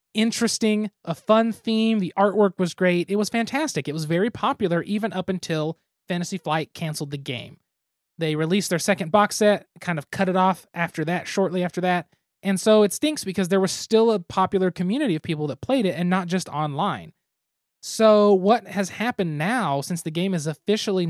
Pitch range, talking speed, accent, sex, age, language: 160-210 Hz, 195 wpm, American, male, 20-39, English